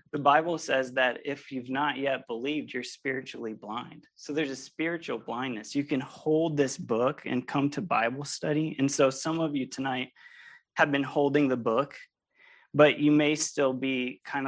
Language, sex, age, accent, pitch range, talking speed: English, male, 20-39, American, 125-150 Hz, 180 wpm